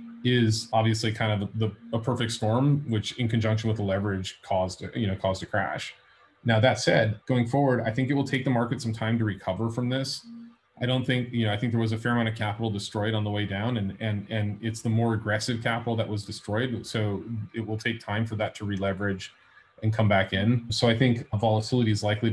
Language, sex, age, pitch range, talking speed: English, male, 30-49, 105-120 Hz, 240 wpm